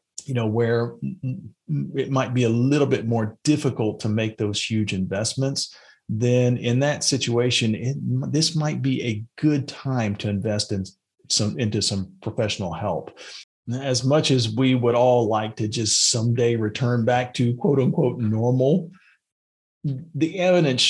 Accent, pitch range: American, 110-135 Hz